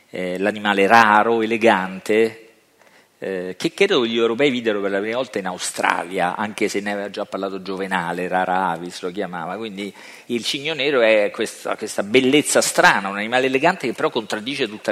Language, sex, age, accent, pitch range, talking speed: Italian, male, 40-59, native, 95-125 Hz, 175 wpm